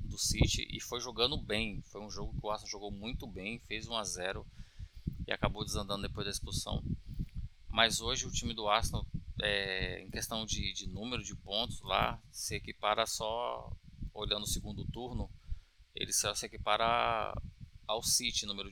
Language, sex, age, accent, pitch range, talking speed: Portuguese, male, 20-39, Brazilian, 95-125 Hz, 175 wpm